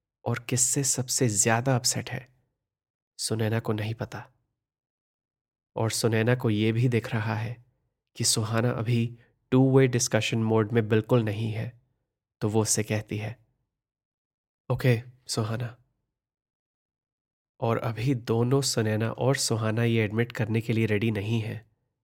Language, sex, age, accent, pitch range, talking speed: Hindi, male, 20-39, native, 110-125 Hz, 140 wpm